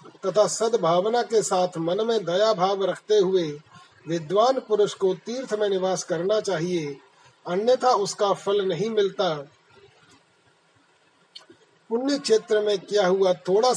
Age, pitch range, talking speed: 40-59, 180-215 Hz, 125 wpm